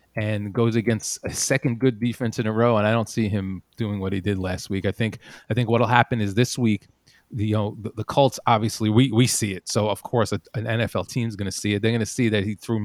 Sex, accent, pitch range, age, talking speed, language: male, American, 100-120 Hz, 30-49, 270 wpm, English